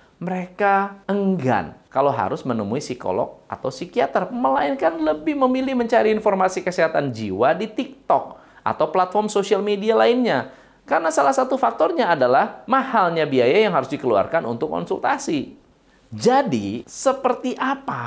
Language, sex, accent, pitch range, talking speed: Indonesian, male, native, 140-225 Hz, 125 wpm